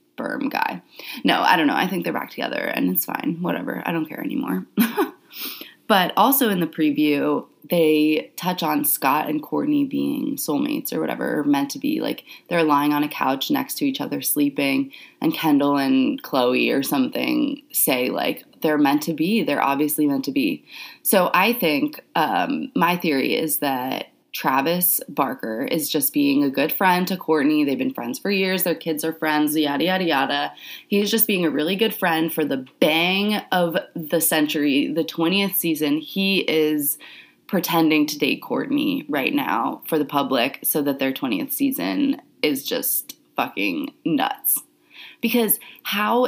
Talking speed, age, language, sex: 170 wpm, 20-39, English, female